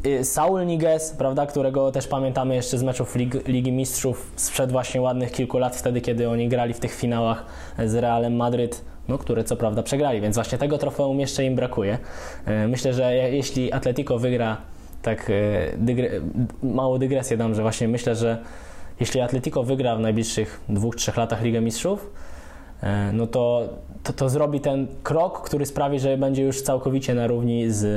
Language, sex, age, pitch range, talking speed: Polish, male, 20-39, 115-140 Hz, 165 wpm